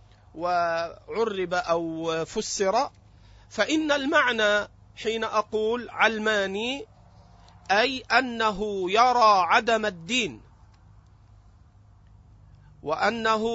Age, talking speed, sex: 40-59, 60 wpm, male